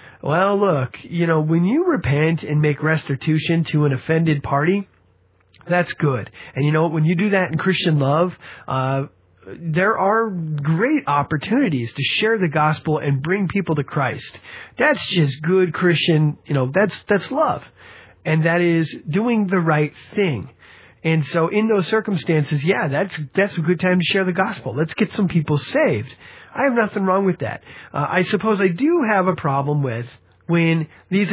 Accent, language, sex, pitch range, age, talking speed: American, English, male, 150-195 Hz, 30-49, 180 wpm